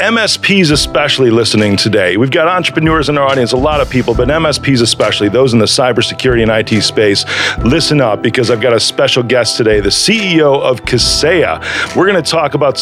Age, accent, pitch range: 40-59, American, 120-150 Hz